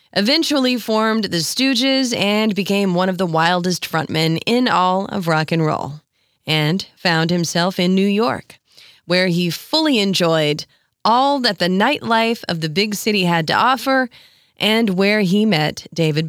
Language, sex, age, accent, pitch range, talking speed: English, female, 30-49, American, 170-230 Hz, 160 wpm